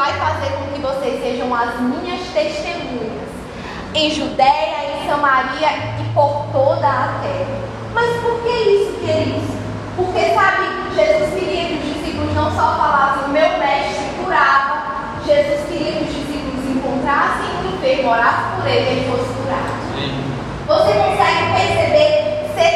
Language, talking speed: Portuguese, 150 wpm